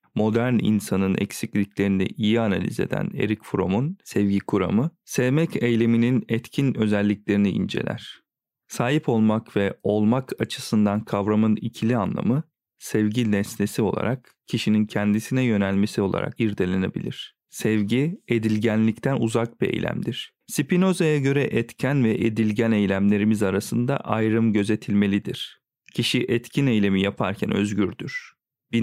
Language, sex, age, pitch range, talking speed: Turkish, male, 40-59, 105-130 Hz, 105 wpm